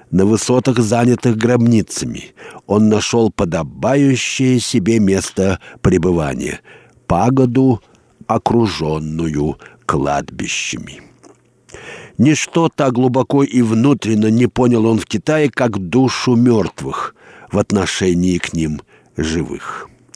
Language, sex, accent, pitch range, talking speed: Russian, male, native, 105-130 Hz, 90 wpm